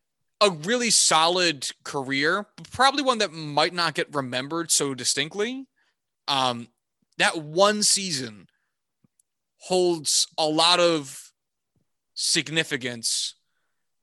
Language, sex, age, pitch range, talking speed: English, male, 20-39, 125-160 Hz, 95 wpm